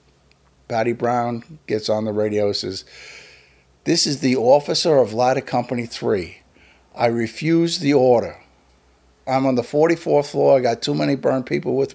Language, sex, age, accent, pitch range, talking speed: English, male, 50-69, American, 105-125 Hz, 160 wpm